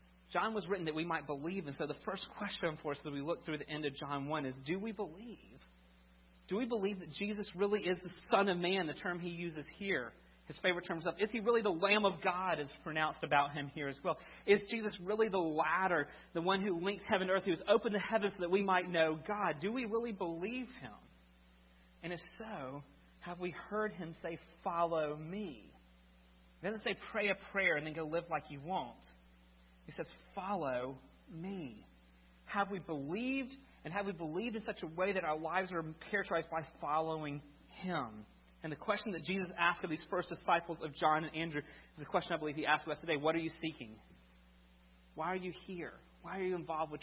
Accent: American